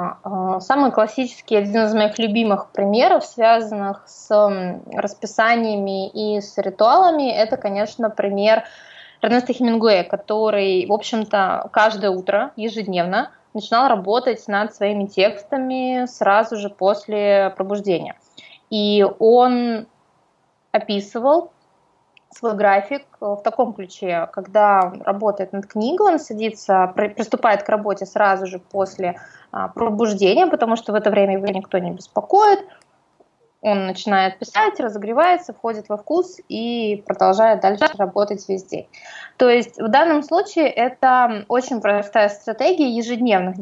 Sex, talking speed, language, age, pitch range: female, 115 wpm, Russian, 20-39, 200-245 Hz